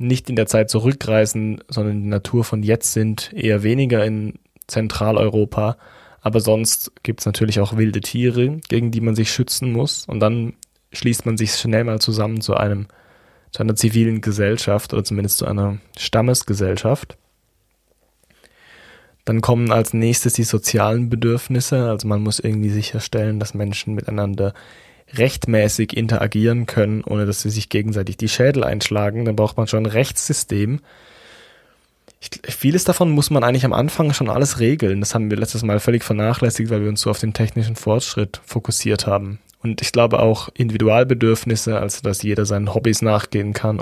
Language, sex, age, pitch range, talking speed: German, male, 10-29, 105-115 Hz, 160 wpm